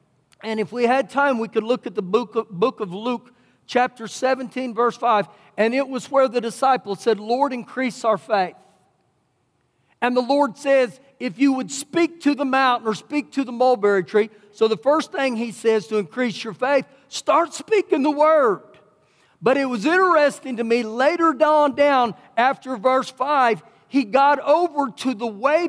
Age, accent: 50-69, American